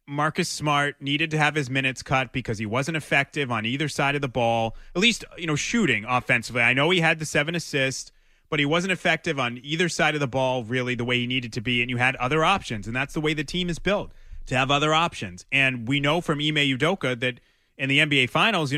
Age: 30-49